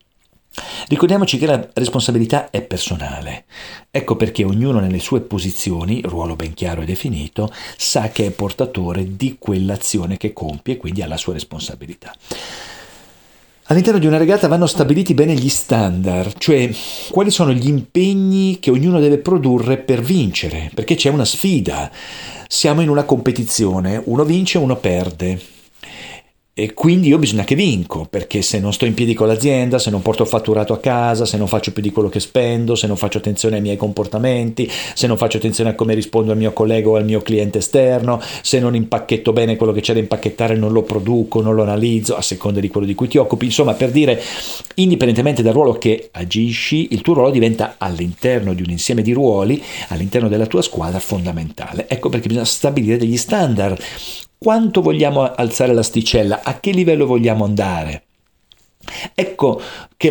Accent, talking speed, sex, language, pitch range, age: native, 175 wpm, male, Italian, 105-135 Hz, 50-69